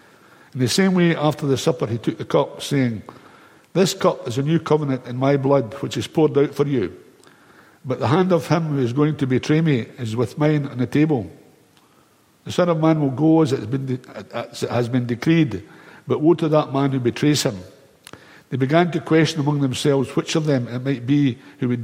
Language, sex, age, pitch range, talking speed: English, male, 60-79, 130-160 Hz, 215 wpm